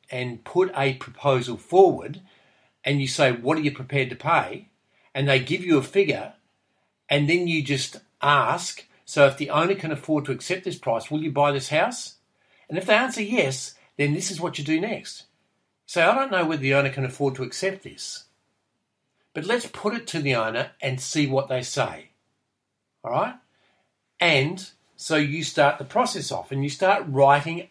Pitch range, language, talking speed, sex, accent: 135-175 Hz, English, 195 wpm, male, Australian